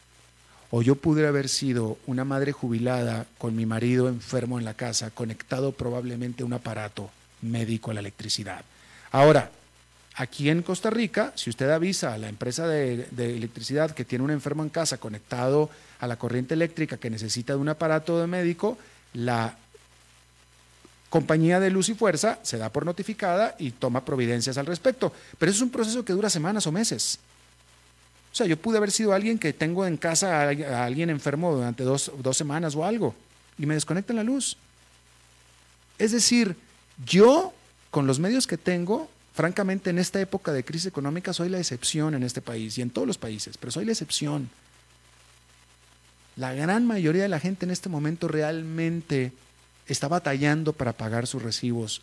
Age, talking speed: 40-59, 175 wpm